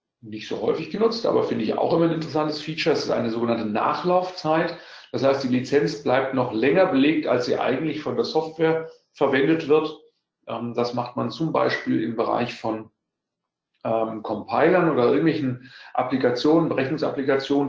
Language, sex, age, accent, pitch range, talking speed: German, male, 40-59, German, 125-160 Hz, 155 wpm